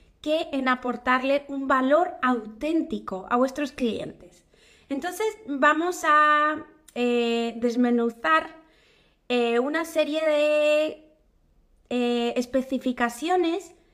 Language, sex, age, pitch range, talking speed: Spanish, female, 20-39, 240-300 Hz, 85 wpm